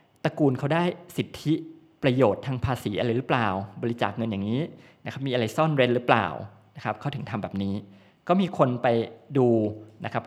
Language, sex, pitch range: Thai, male, 110-140 Hz